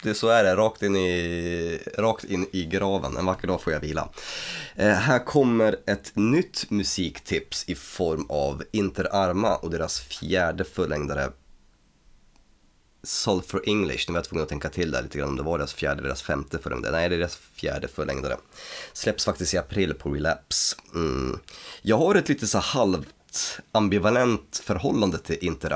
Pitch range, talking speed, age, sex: 80-105 Hz, 180 wpm, 30-49, male